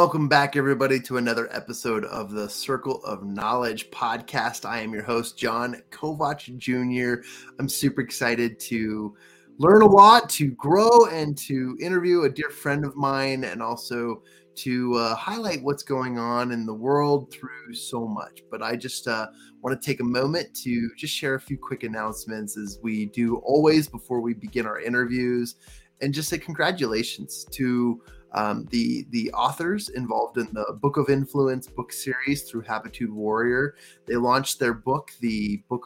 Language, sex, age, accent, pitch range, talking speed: English, male, 20-39, American, 120-140 Hz, 165 wpm